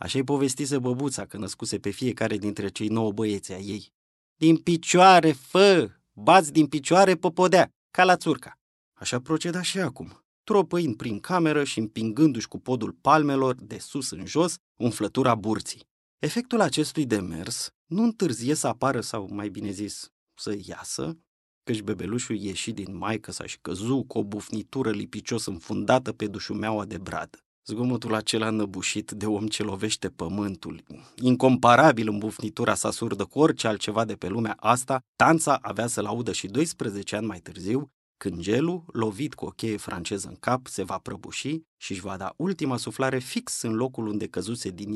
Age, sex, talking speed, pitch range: 30-49, male, 165 wpm, 105-140 Hz